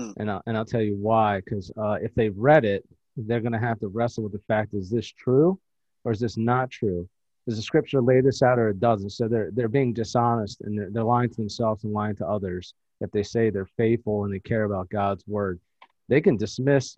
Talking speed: 230 wpm